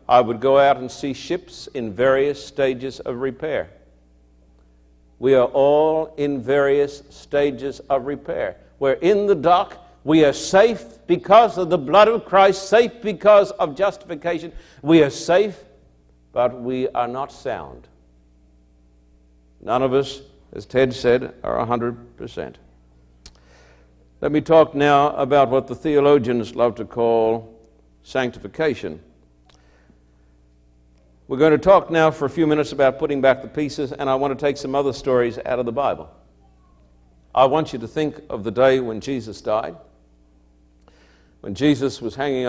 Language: English